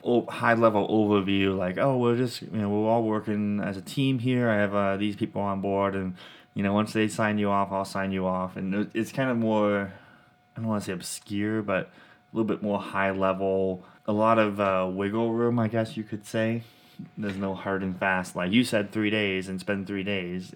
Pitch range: 95-110 Hz